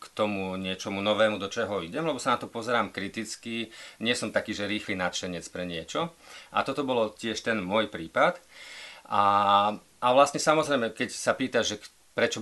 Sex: male